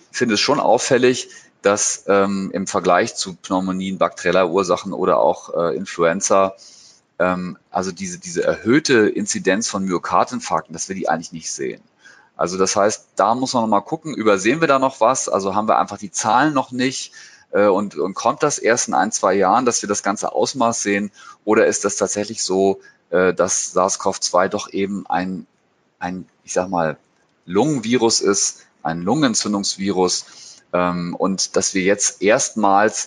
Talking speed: 170 wpm